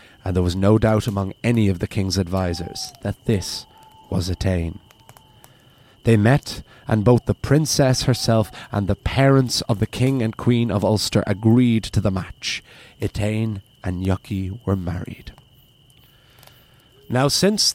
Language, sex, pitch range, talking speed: English, male, 100-125 Hz, 145 wpm